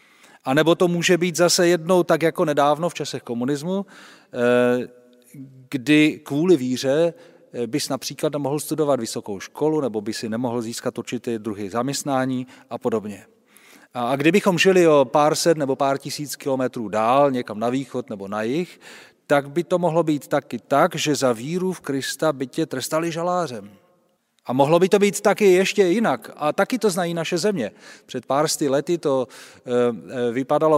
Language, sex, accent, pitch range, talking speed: Czech, male, native, 135-180 Hz, 165 wpm